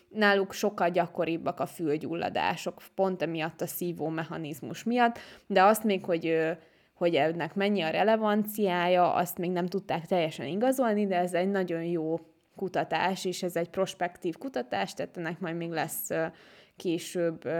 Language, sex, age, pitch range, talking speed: Hungarian, female, 20-39, 170-200 Hz, 145 wpm